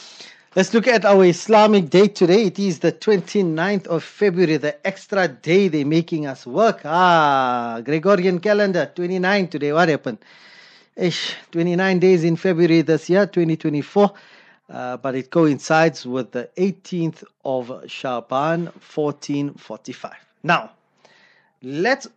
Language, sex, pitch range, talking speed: English, male, 140-190 Hz, 125 wpm